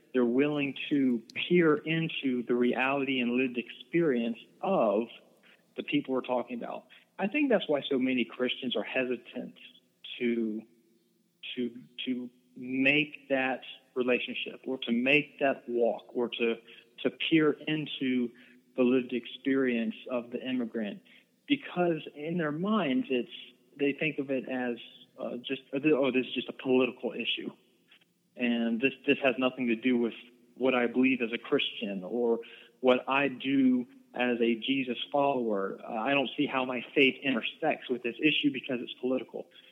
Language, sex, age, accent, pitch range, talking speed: English, male, 40-59, American, 120-145 Hz, 155 wpm